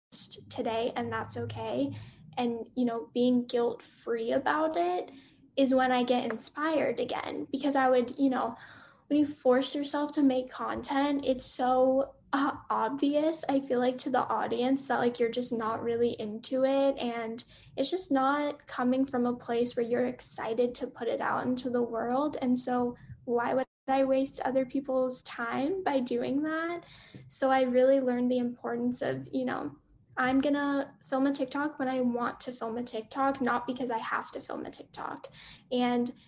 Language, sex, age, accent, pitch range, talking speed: English, female, 10-29, American, 245-275 Hz, 180 wpm